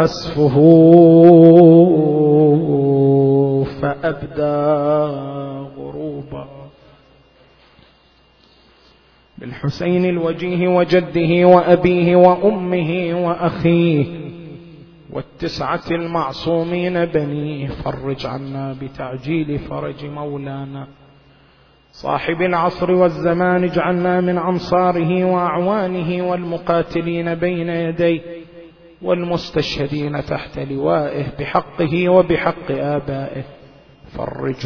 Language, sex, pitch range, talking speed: Arabic, male, 145-180 Hz, 60 wpm